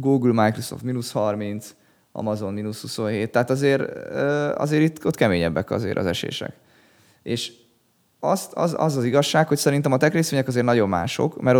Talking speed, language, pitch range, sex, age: 155 wpm, Hungarian, 100-130 Hz, male, 20-39